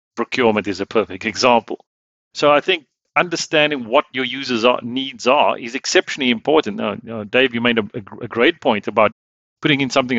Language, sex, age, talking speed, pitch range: English, male, 40-59, 190 wpm, 110-135 Hz